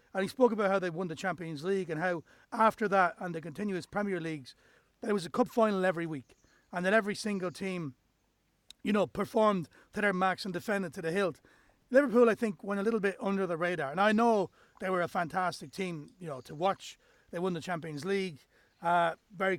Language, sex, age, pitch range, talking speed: English, male, 30-49, 170-210 Hz, 220 wpm